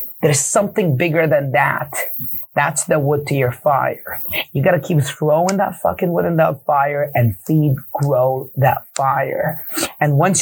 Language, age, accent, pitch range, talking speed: English, 30-49, American, 145-185 Hz, 160 wpm